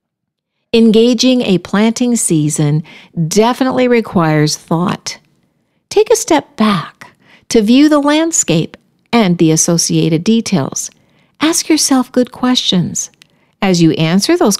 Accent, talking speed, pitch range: American, 110 wpm, 170-240 Hz